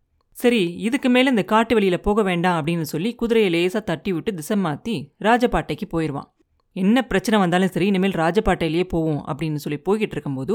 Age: 30-49